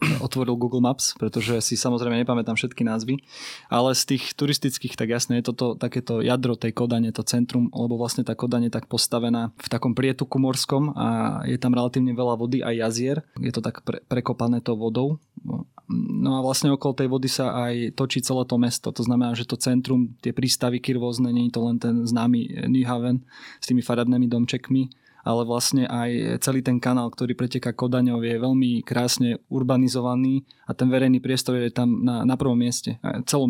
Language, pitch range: Slovak, 120-130 Hz